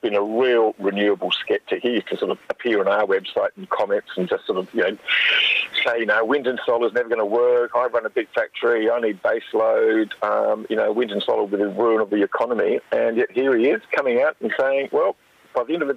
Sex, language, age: male, English, 50-69